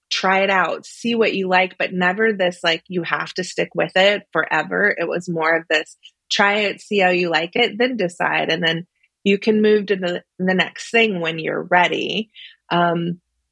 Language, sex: English, female